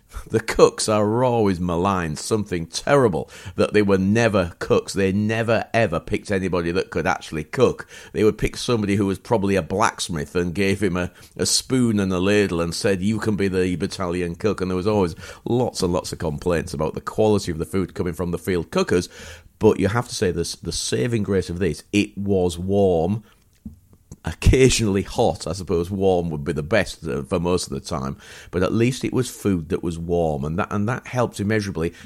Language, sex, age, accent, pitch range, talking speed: English, male, 40-59, British, 85-110 Hz, 205 wpm